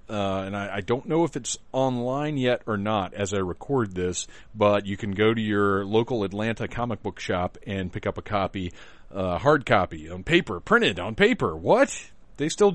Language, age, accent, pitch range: English, 40-59, American, 105-145 Hz